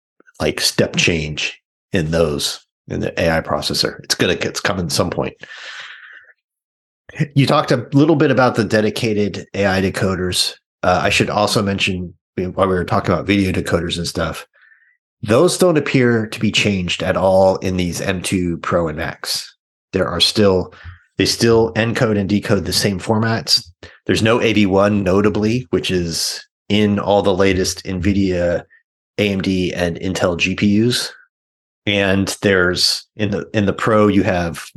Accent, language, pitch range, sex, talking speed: American, English, 90-110 Hz, male, 155 wpm